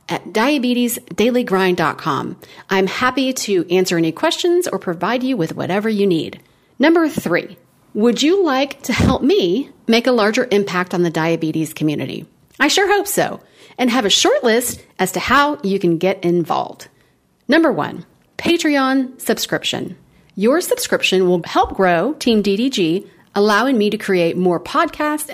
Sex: female